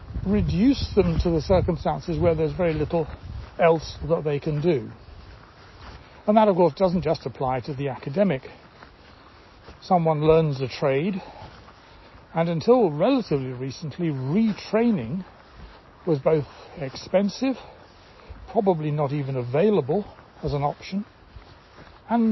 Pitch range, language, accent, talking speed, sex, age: 125-190 Hz, English, British, 120 wpm, male, 60-79